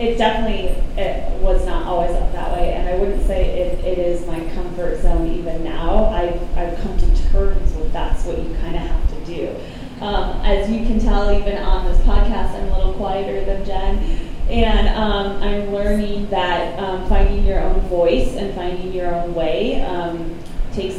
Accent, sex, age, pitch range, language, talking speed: American, female, 20-39, 170-195 Hz, English, 190 wpm